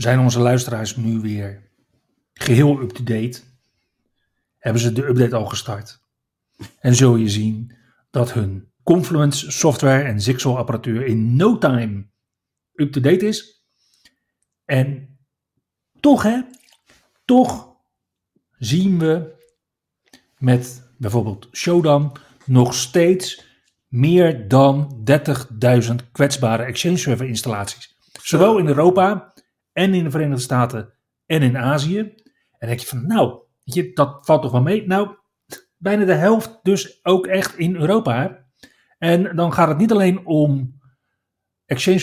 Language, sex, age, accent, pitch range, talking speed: Dutch, male, 40-59, Dutch, 120-175 Hz, 125 wpm